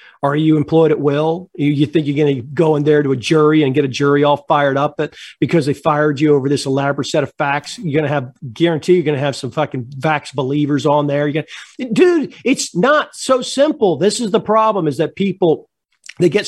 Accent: American